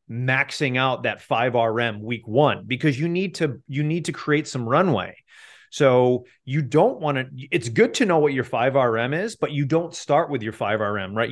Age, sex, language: 30-49, male, English